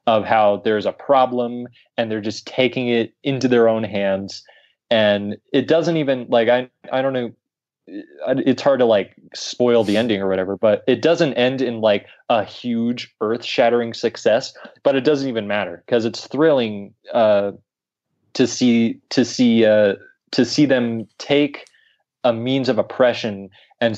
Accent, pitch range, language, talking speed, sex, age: American, 105-130 Hz, English, 165 wpm, male, 20-39